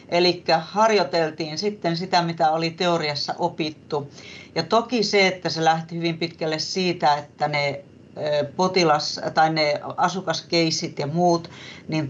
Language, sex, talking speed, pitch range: Finnish, female, 130 wpm, 150-175 Hz